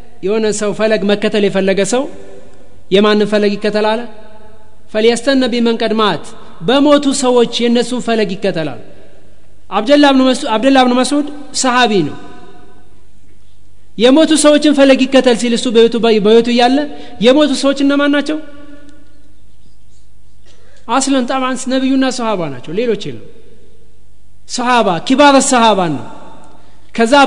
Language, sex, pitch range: Amharic, male, 170-260 Hz